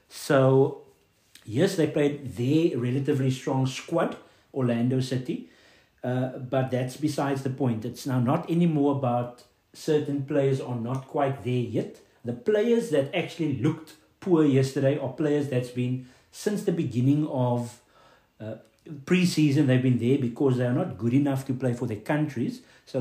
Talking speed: 155 wpm